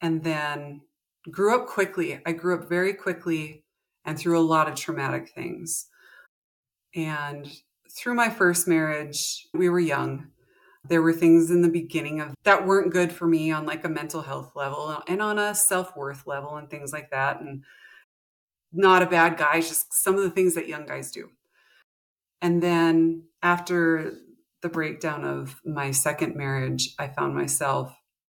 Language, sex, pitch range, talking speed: English, female, 145-175 Hz, 165 wpm